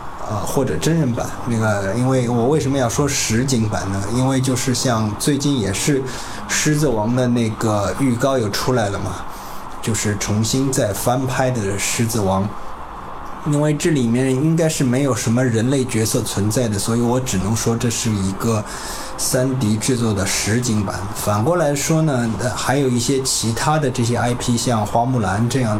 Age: 20-39